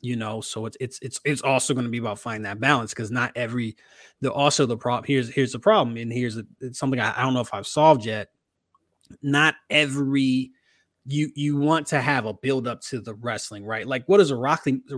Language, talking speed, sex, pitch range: English, 235 wpm, male, 120-145 Hz